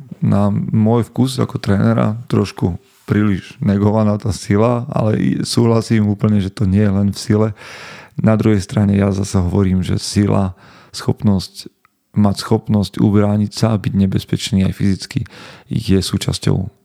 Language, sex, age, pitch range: Slovak, male, 40-59, 95-115 Hz